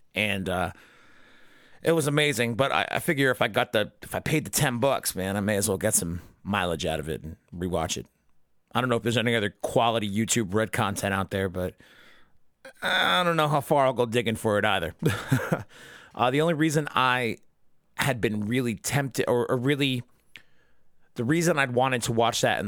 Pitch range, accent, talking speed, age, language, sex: 100-130 Hz, American, 205 wpm, 30-49, English, male